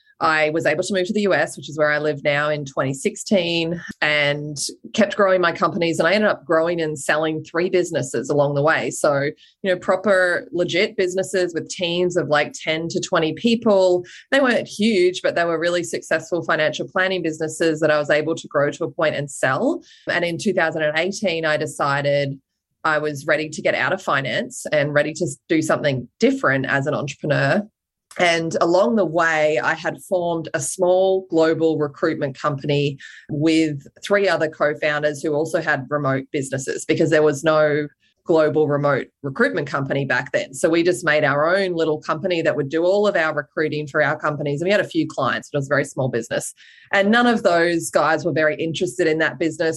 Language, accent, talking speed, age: English, Australian, 200 wpm, 20-39